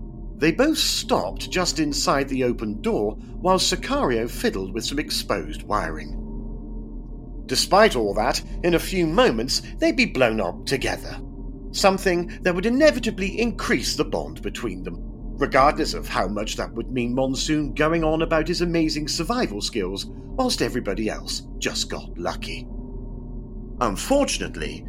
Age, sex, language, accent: 40-59, male, English, British